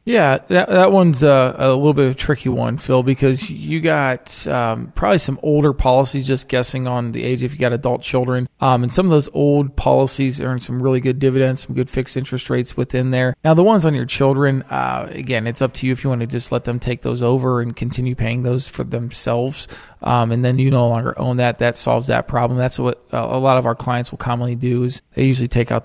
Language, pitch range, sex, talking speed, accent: English, 120-140 Hz, male, 245 wpm, American